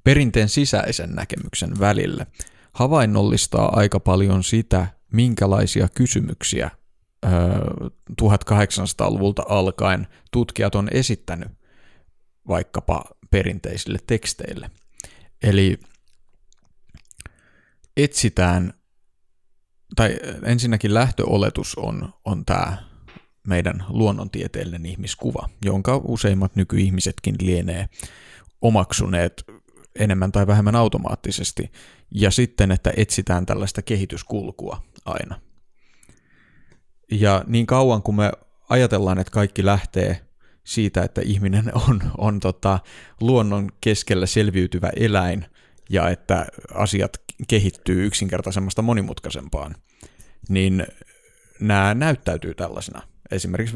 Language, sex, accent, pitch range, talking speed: Finnish, male, native, 95-110 Hz, 85 wpm